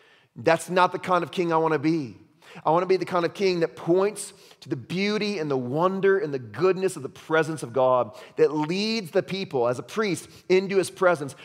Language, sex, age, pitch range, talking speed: English, male, 30-49, 130-190 Hz, 230 wpm